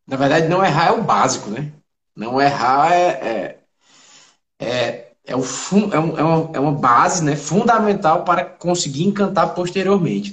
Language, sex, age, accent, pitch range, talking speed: Portuguese, male, 20-39, Brazilian, 140-190 Hz, 110 wpm